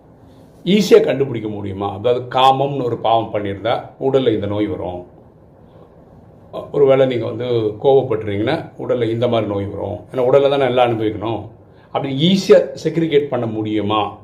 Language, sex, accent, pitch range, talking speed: Tamil, male, native, 110-140 Hz, 130 wpm